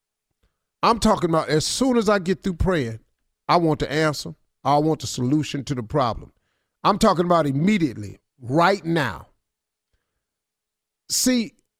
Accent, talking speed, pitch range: American, 140 wpm, 145-235 Hz